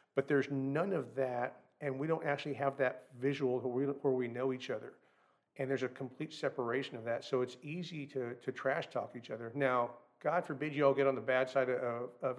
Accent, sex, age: American, male, 50-69